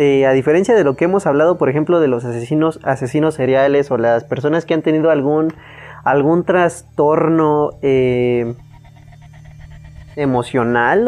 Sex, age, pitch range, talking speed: male, 20-39, 130-180 Hz, 140 wpm